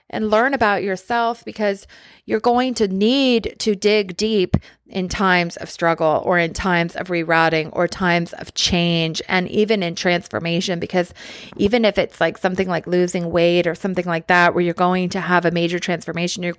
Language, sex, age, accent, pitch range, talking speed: English, female, 30-49, American, 175-210 Hz, 185 wpm